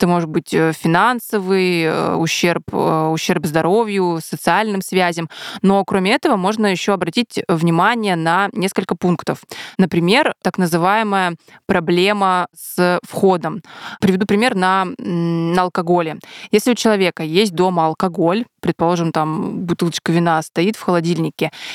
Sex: female